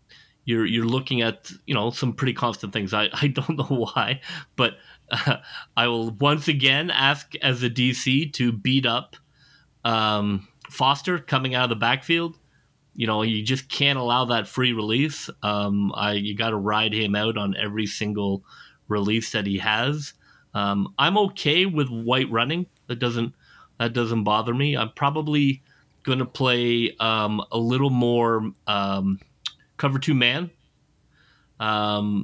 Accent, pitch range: American, 105-130 Hz